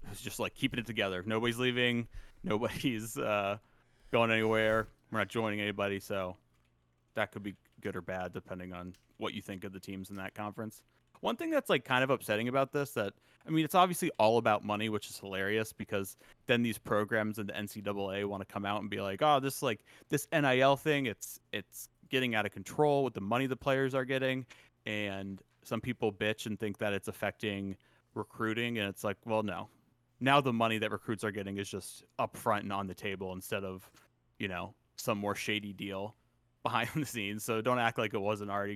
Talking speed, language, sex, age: 210 wpm, English, male, 30-49